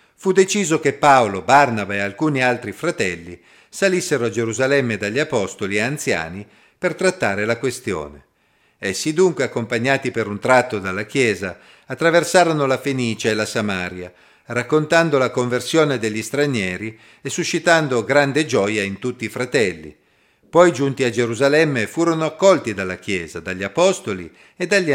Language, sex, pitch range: Italian, male, 110-155 Hz